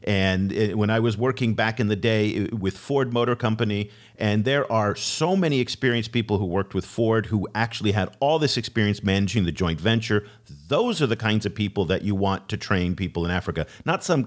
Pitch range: 95-125 Hz